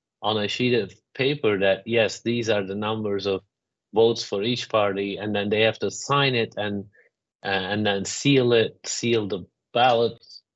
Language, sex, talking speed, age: Turkish, male, 175 wpm, 30-49